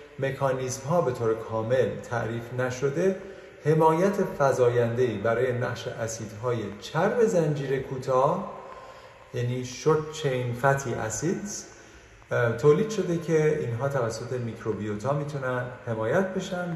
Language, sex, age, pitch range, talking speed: Persian, male, 30-49, 115-155 Hz, 105 wpm